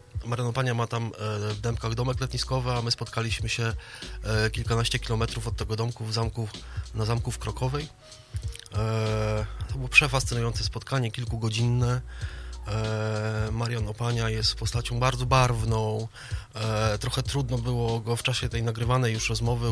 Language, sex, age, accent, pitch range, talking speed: Polish, male, 20-39, native, 110-125 Hz, 150 wpm